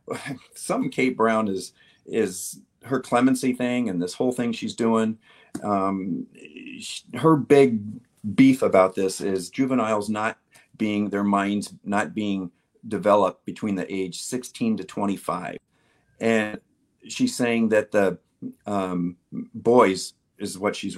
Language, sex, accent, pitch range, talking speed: English, male, American, 100-140 Hz, 130 wpm